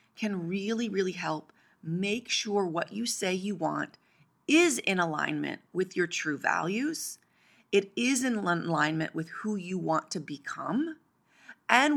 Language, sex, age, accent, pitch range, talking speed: English, female, 30-49, American, 170-230 Hz, 145 wpm